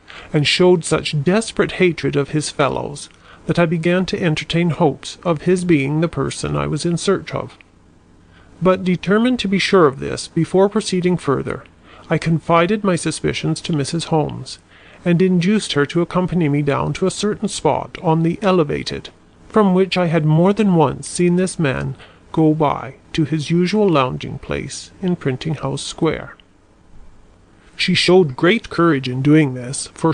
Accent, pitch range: American, 135-180 Hz